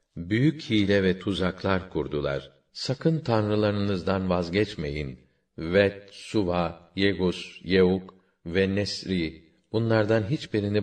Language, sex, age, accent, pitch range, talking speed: Turkish, male, 50-69, native, 85-100 Hz, 90 wpm